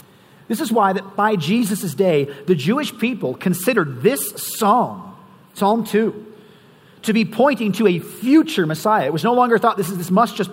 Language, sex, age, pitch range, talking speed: English, male, 40-59, 165-210 Hz, 180 wpm